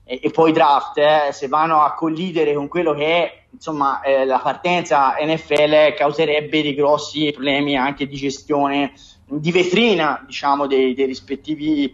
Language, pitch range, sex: Italian, 140-175 Hz, male